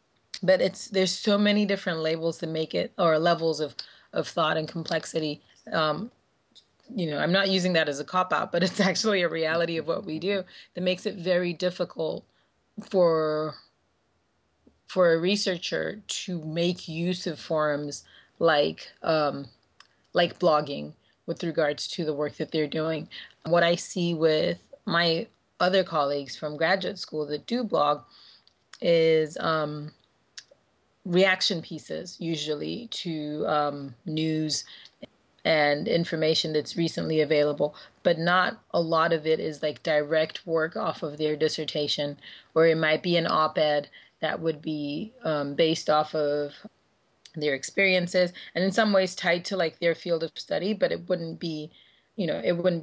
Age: 30-49